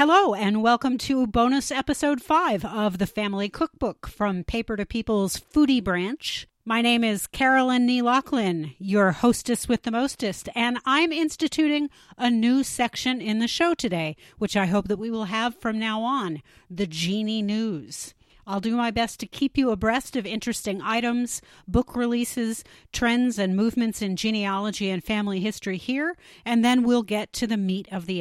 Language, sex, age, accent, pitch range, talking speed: English, female, 40-59, American, 190-240 Hz, 170 wpm